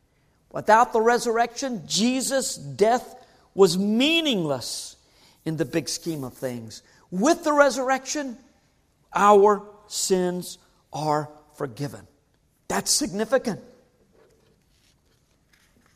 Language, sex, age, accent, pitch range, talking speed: English, male, 50-69, American, 215-320 Hz, 85 wpm